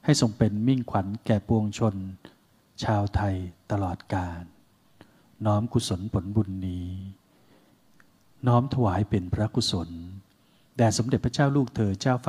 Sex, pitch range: male, 95-115 Hz